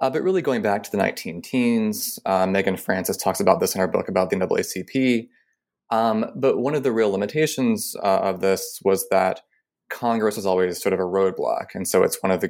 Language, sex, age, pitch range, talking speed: English, male, 20-39, 90-120 Hz, 210 wpm